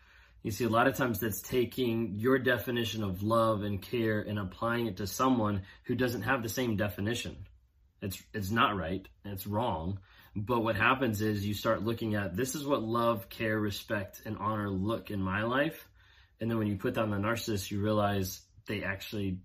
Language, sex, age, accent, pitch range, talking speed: English, male, 20-39, American, 95-110 Hz, 195 wpm